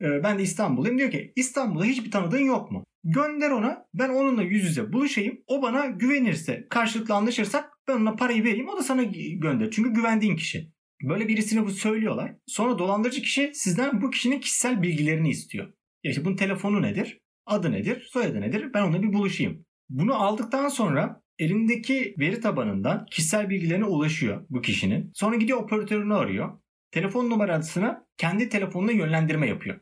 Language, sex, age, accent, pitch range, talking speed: Turkish, male, 30-49, native, 175-235 Hz, 155 wpm